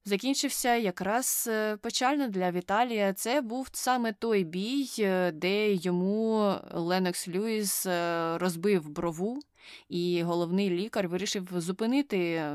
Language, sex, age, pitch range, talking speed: Ukrainian, female, 20-39, 170-205 Hz, 100 wpm